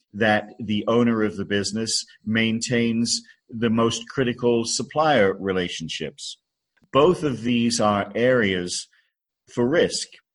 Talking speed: 110 wpm